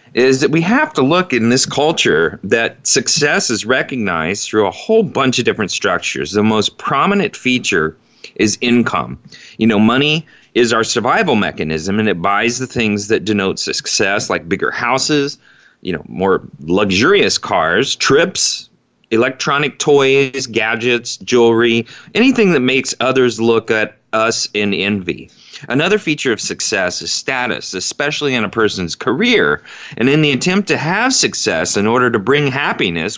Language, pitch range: English, 115-165 Hz